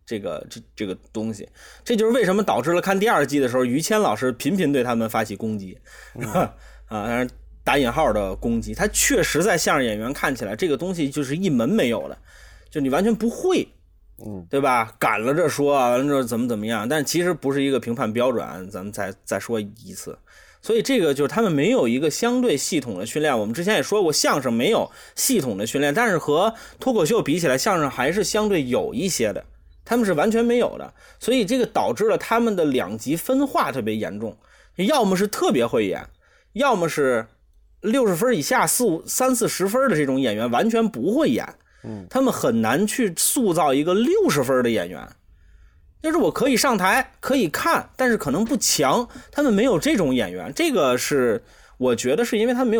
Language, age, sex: Chinese, 20-39, male